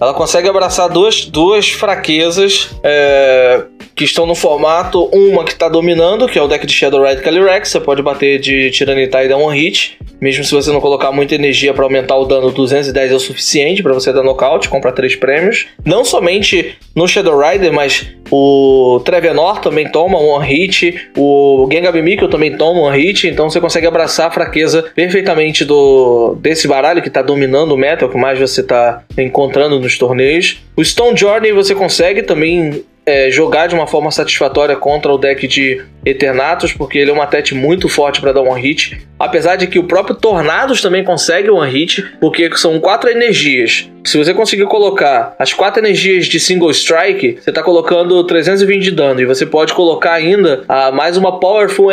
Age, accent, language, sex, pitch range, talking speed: 20-39, Brazilian, Portuguese, male, 135-185 Hz, 190 wpm